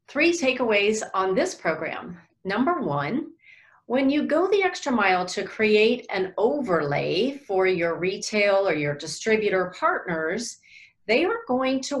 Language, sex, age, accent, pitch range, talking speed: English, female, 40-59, American, 165-260 Hz, 140 wpm